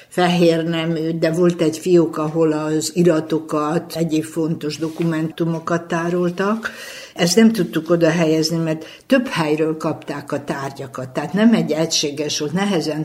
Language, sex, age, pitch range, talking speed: Hungarian, female, 60-79, 150-180 Hz, 140 wpm